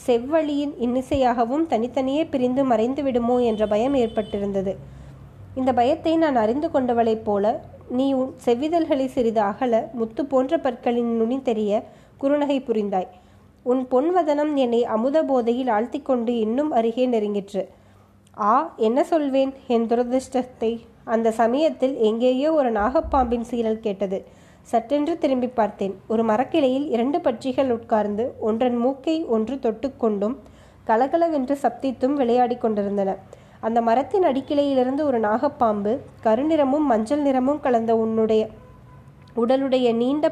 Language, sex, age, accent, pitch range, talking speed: Tamil, female, 20-39, native, 225-275 Hz, 110 wpm